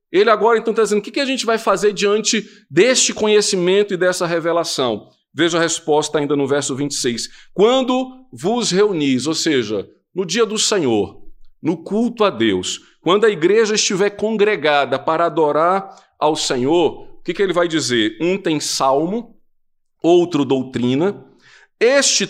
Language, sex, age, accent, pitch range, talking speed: Portuguese, male, 50-69, Brazilian, 155-210 Hz, 155 wpm